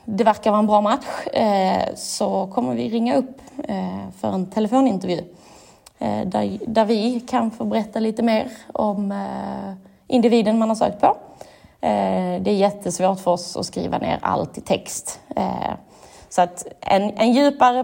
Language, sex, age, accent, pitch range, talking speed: Swedish, female, 20-39, native, 180-220 Hz, 140 wpm